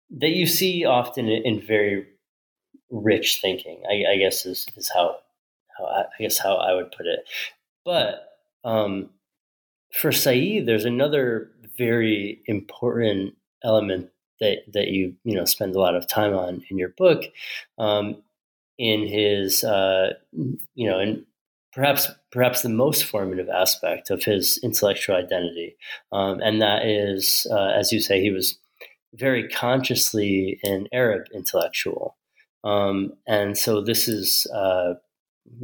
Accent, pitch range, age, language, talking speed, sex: American, 100-125 Hz, 30-49, English, 140 wpm, male